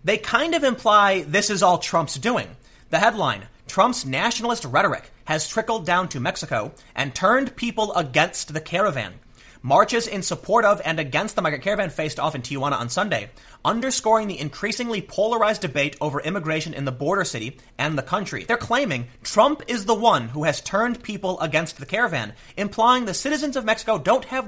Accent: American